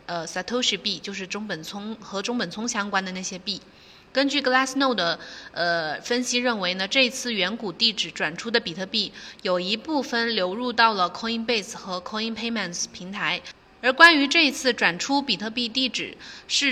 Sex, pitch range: female, 190-250 Hz